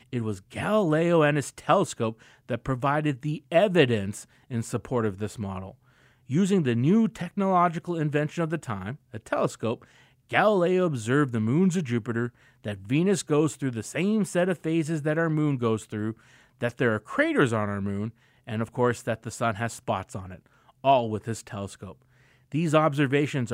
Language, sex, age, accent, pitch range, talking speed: English, male, 30-49, American, 110-155 Hz, 175 wpm